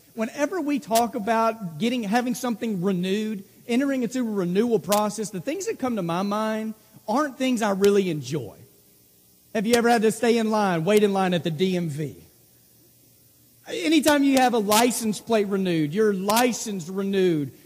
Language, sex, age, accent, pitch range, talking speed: English, male, 40-59, American, 185-235 Hz, 165 wpm